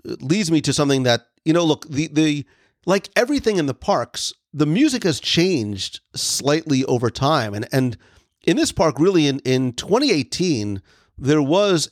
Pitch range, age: 120-160 Hz, 40-59